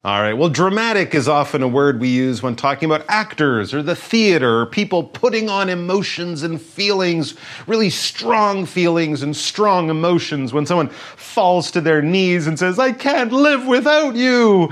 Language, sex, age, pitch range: Chinese, male, 30-49, 115-170 Hz